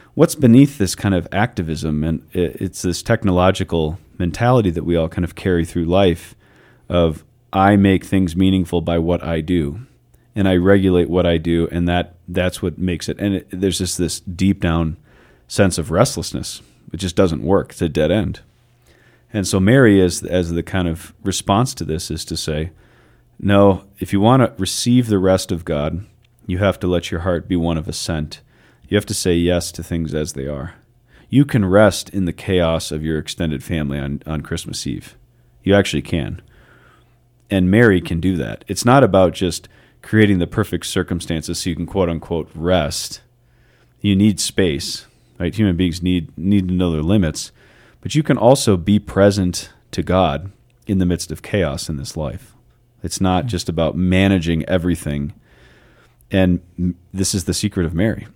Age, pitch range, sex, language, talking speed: 40-59, 85-105 Hz, male, English, 180 wpm